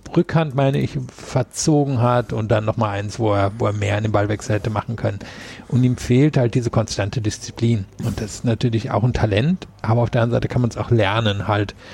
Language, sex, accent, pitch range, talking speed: German, male, German, 110-125 Hz, 225 wpm